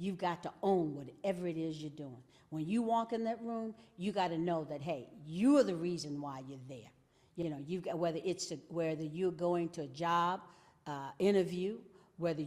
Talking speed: 210 wpm